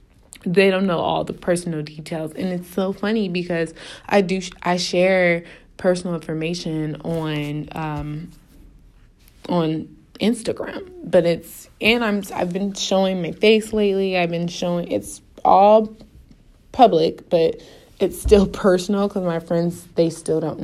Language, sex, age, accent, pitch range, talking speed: English, female, 20-39, American, 165-195 Hz, 140 wpm